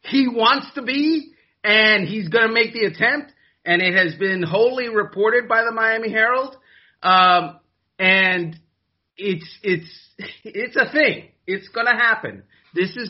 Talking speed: 155 wpm